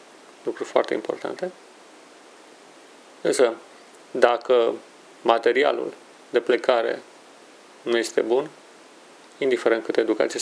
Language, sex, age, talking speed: Romanian, male, 30-49, 80 wpm